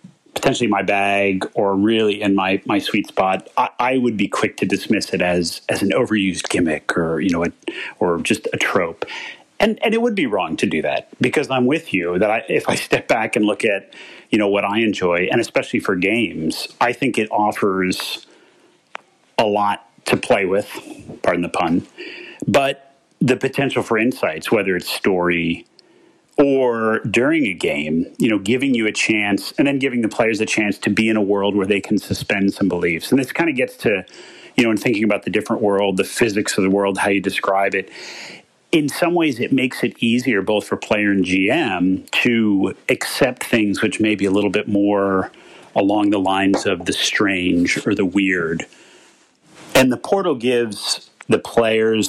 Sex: male